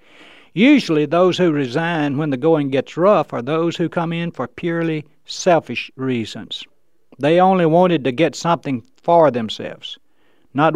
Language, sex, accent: English, male, American